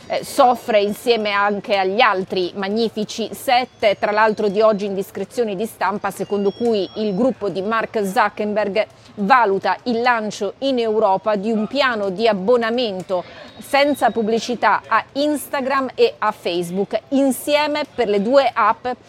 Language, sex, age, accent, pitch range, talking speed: Italian, female, 40-59, native, 200-250 Hz, 140 wpm